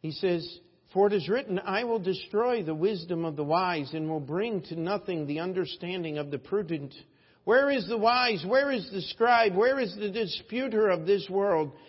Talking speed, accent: 195 wpm, American